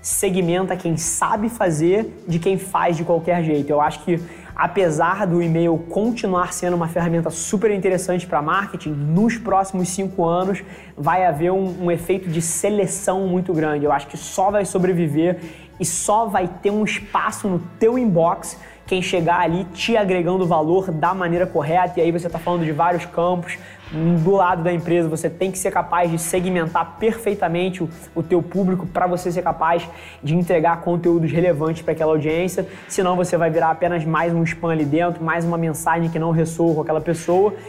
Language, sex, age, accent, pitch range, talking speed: Portuguese, male, 20-39, Brazilian, 165-190 Hz, 185 wpm